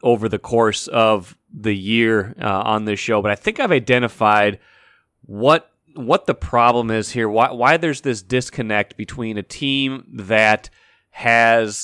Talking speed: 155 wpm